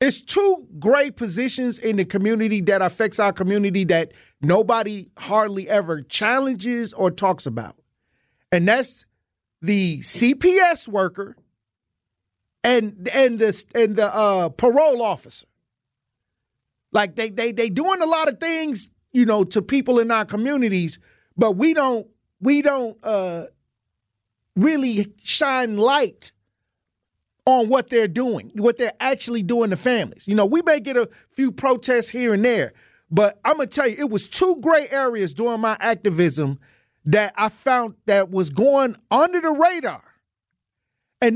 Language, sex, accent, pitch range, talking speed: English, male, American, 185-265 Hz, 150 wpm